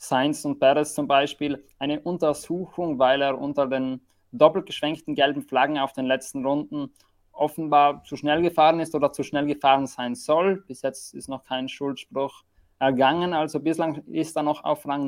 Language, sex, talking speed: German, male, 175 wpm